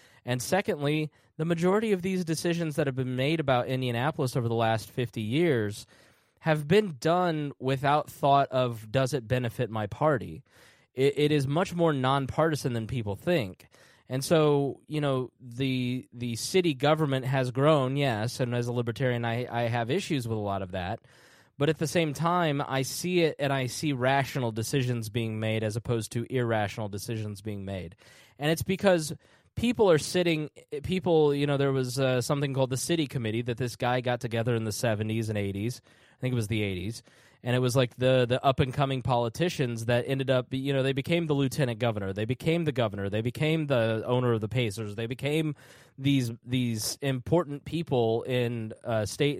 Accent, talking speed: American, 185 wpm